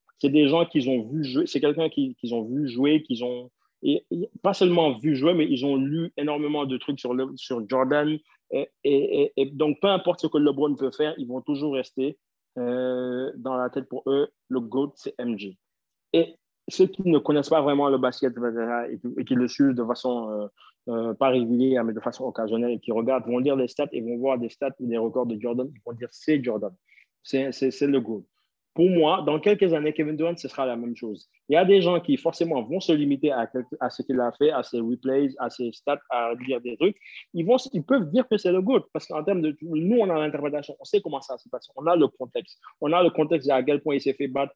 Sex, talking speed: male, 255 wpm